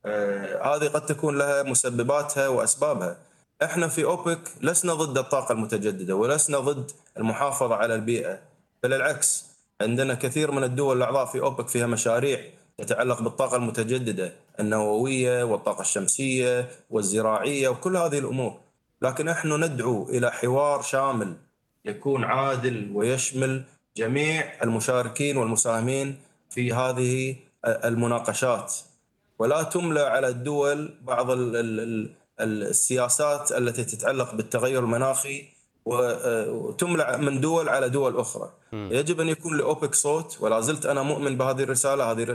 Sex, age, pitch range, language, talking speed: male, 30-49, 120-145 Hz, Arabic, 115 wpm